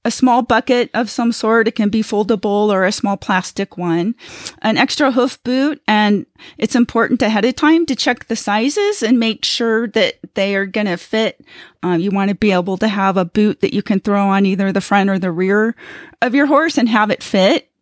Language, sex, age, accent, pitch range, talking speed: English, female, 30-49, American, 200-250 Hz, 220 wpm